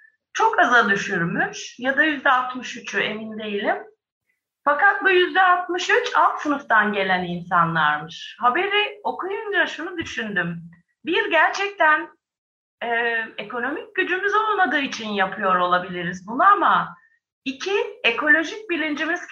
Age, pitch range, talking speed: 30-49, 215-345 Hz, 100 wpm